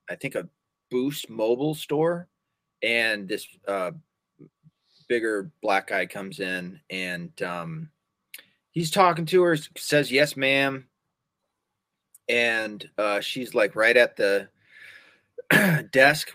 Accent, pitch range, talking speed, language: American, 100-150 Hz, 115 wpm, English